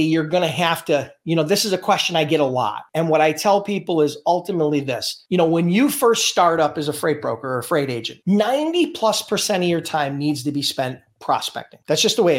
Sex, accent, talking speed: male, American, 250 wpm